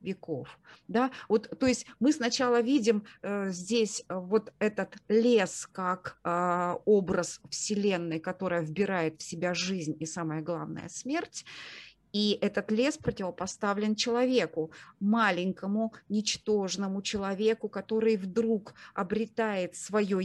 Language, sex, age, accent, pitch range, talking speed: Russian, female, 30-49, native, 175-215 Hz, 115 wpm